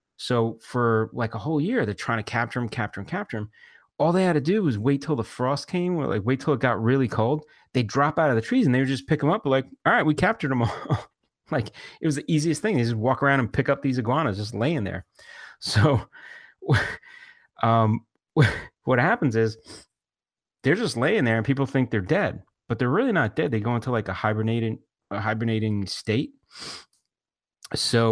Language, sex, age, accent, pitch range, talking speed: English, male, 30-49, American, 105-135 Hz, 215 wpm